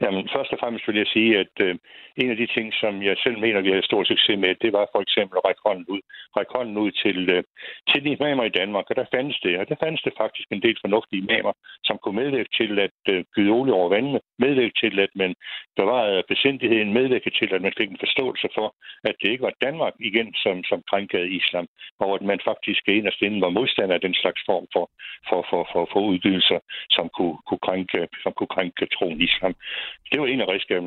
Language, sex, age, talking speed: Danish, male, 60-79, 230 wpm